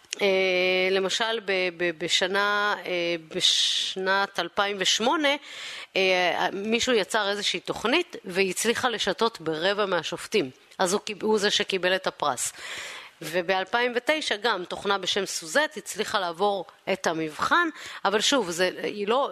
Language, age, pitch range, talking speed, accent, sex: Hebrew, 30-49, 170-220 Hz, 115 wpm, native, female